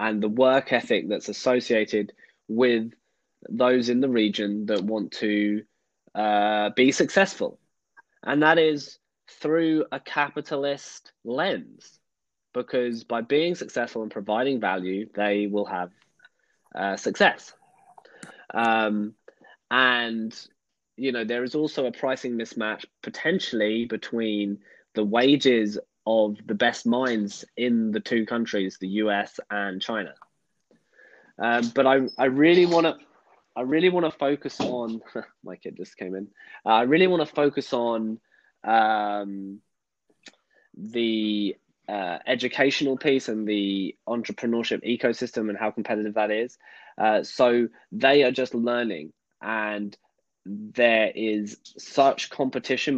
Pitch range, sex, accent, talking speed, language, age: 105-130 Hz, male, British, 125 wpm, English, 20-39